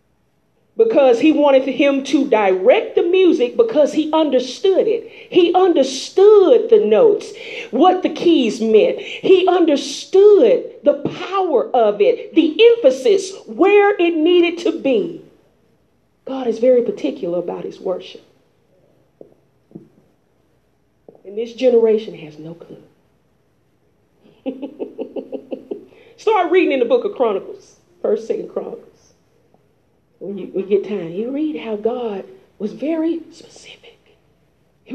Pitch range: 265-440 Hz